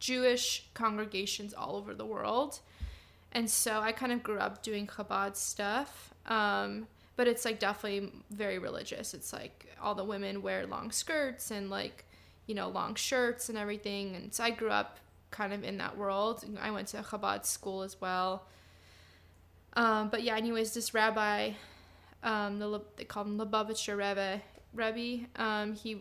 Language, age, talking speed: English, 10-29, 170 wpm